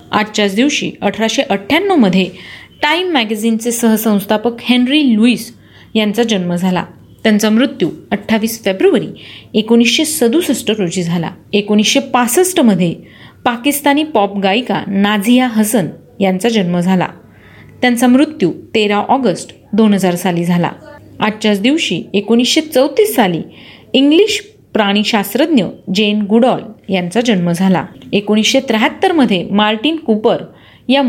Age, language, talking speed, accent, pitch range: 40-59, Marathi, 100 wpm, native, 200-255 Hz